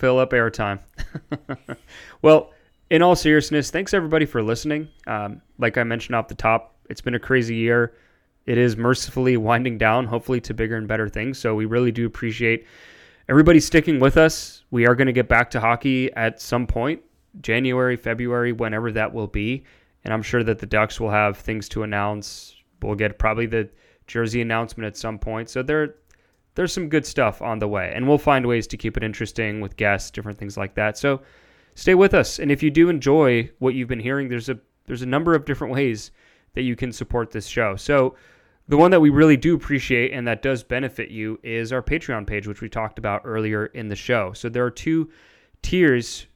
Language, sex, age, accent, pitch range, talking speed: English, male, 20-39, American, 110-130 Hz, 205 wpm